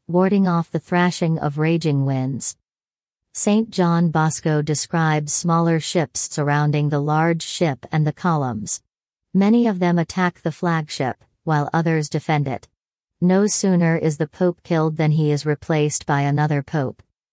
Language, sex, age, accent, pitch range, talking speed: English, female, 40-59, American, 150-180 Hz, 150 wpm